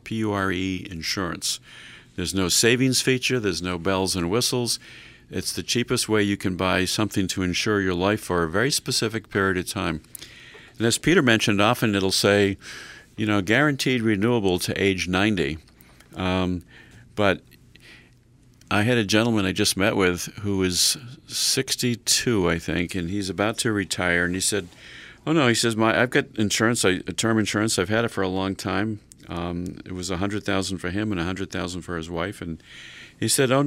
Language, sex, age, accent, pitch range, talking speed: English, male, 50-69, American, 90-115 Hz, 180 wpm